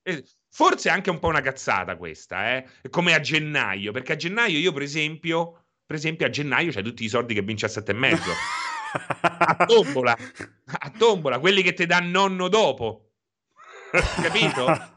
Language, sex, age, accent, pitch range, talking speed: Italian, male, 30-49, native, 115-170 Hz, 170 wpm